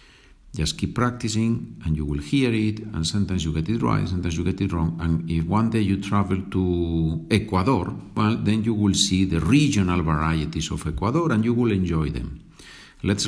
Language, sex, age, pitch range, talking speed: Spanish, male, 50-69, 80-105 Hz, 195 wpm